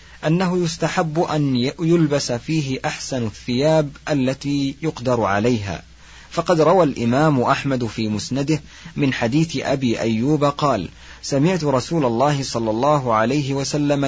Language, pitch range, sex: Arabic, 120-155 Hz, male